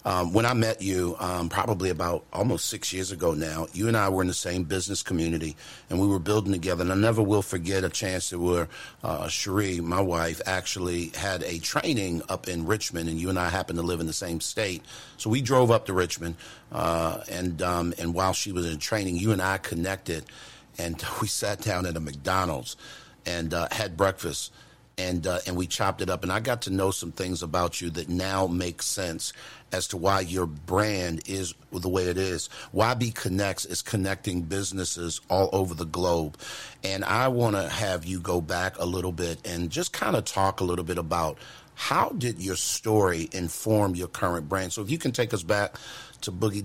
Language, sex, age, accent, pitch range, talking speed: English, male, 50-69, American, 90-105 Hz, 205 wpm